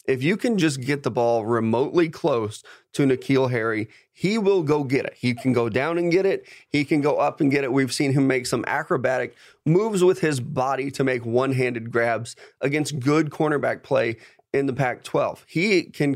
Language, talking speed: English, 200 wpm